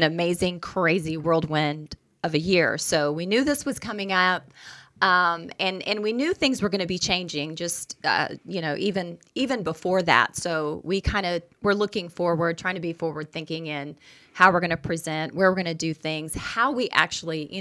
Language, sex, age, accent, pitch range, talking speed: English, female, 30-49, American, 160-205 Hz, 200 wpm